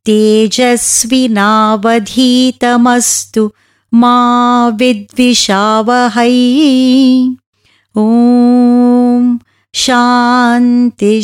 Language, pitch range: English, 205-255 Hz